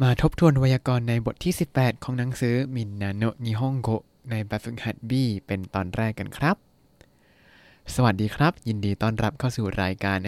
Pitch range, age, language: 105-140 Hz, 20-39, Thai